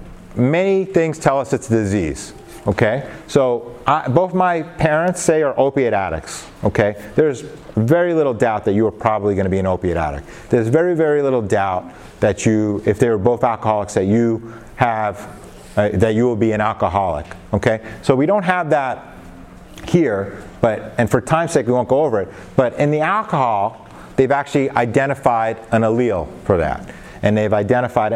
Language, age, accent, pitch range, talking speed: English, 30-49, American, 105-140 Hz, 180 wpm